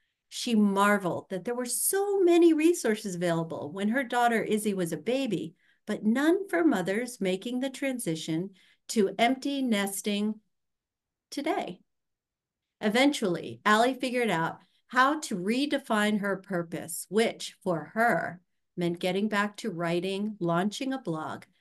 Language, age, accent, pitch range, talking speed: English, 50-69, American, 170-235 Hz, 130 wpm